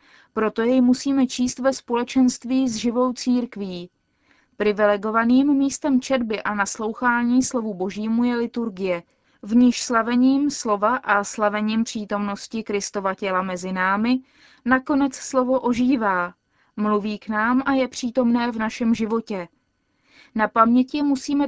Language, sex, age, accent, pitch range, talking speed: Czech, female, 20-39, native, 205-250 Hz, 125 wpm